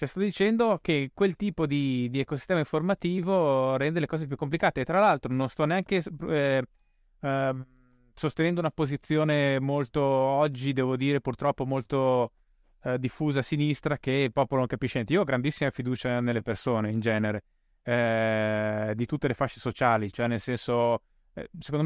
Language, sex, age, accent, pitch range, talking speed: Italian, male, 20-39, native, 120-145 Hz, 165 wpm